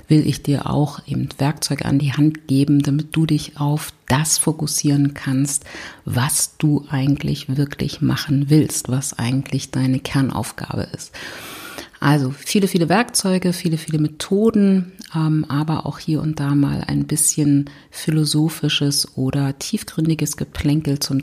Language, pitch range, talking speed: German, 140-155 Hz, 135 wpm